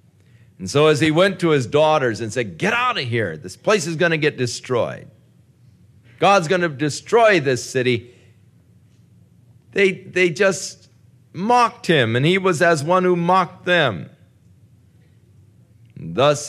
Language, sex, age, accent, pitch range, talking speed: English, male, 50-69, American, 120-190 Hz, 150 wpm